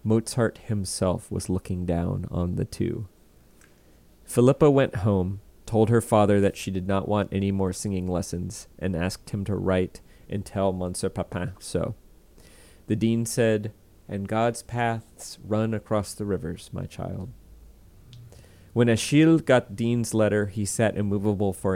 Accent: American